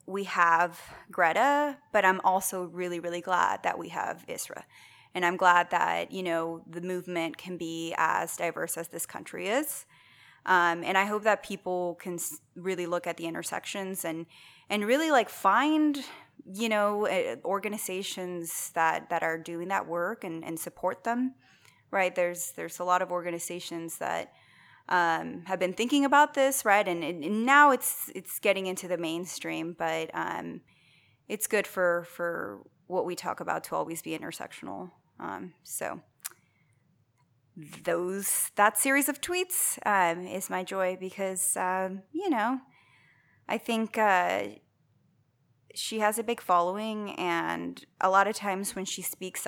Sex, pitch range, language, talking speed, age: female, 175-215 Hz, English, 155 wpm, 20-39